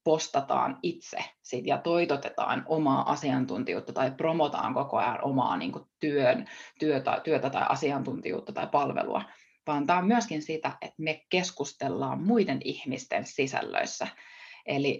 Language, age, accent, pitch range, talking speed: Finnish, 20-39, native, 145-215 Hz, 120 wpm